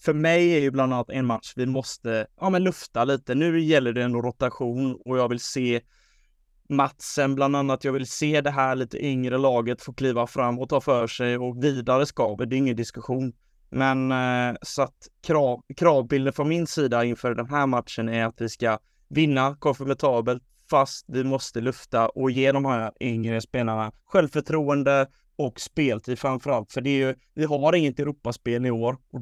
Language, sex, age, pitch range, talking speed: Swedish, male, 20-39, 120-140 Hz, 190 wpm